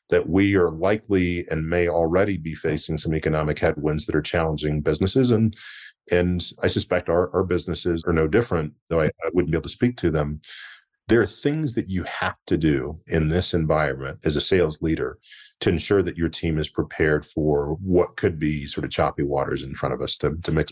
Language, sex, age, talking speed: English, male, 40-59, 210 wpm